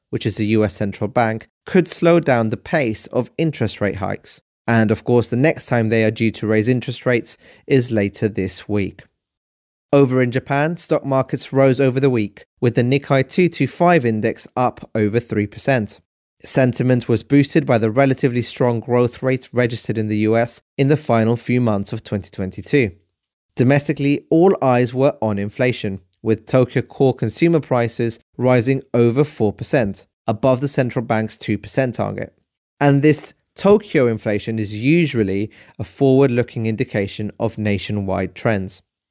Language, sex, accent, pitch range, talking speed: English, male, British, 110-135 Hz, 155 wpm